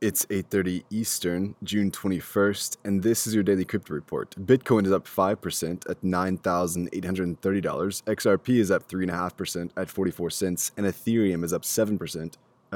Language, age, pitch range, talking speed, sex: English, 20-39, 85-100 Hz, 140 wpm, male